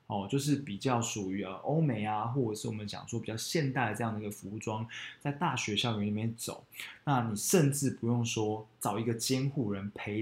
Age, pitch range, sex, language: 20-39, 105-135 Hz, male, Chinese